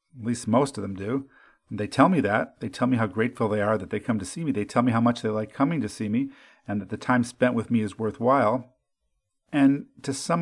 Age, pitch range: 50-69, 105-135 Hz